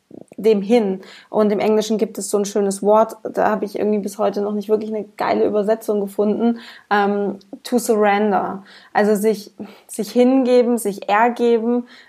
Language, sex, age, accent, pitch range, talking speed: German, female, 20-39, German, 210-245 Hz, 160 wpm